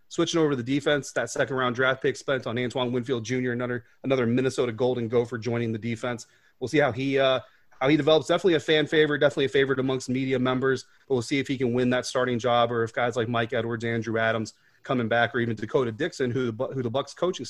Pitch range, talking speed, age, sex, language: 115-140 Hz, 235 wpm, 30-49, male, English